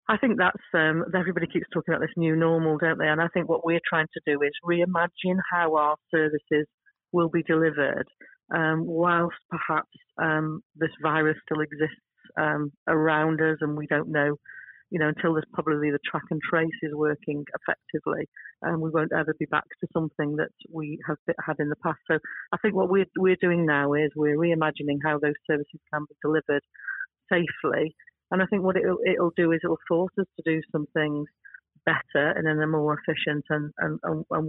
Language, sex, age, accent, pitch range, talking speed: English, female, 40-59, British, 150-170 Hz, 195 wpm